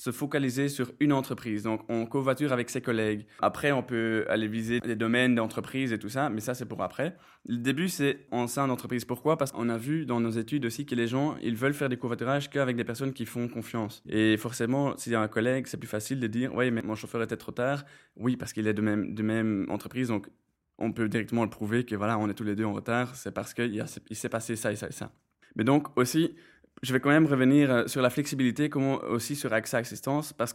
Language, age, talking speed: French, 20-39, 245 wpm